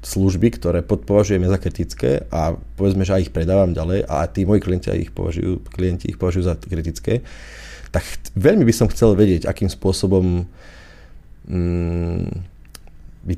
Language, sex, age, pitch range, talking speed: Slovak, male, 20-39, 85-105 Hz, 155 wpm